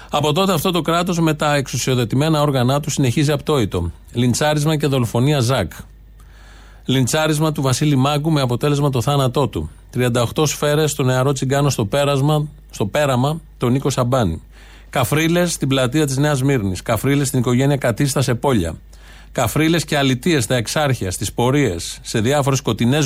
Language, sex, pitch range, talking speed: Greek, male, 120-150 Hz, 150 wpm